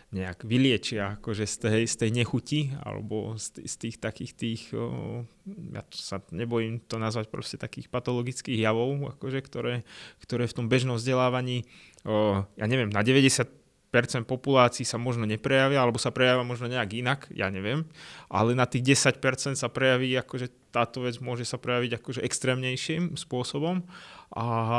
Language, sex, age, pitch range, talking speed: Slovak, male, 20-39, 115-135 Hz, 155 wpm